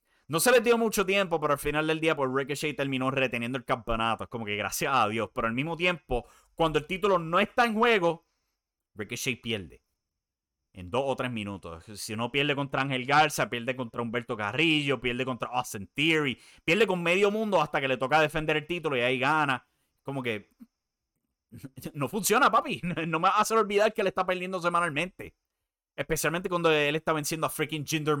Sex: male